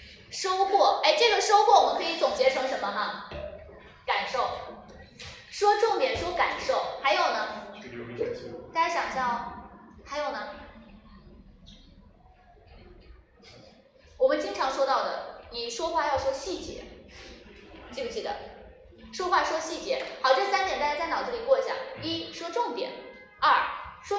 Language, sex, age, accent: Chinese, female, 20-39, native